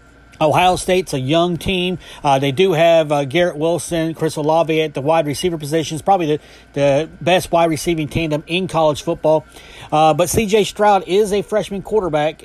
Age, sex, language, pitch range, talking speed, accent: 30-49, male, English, 145-180 Hz, 180 wpm, American